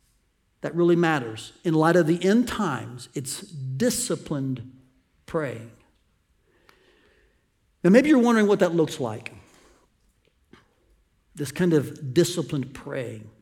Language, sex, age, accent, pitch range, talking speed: English, male, 60-79, American, 135-180 Hz, 110 wpm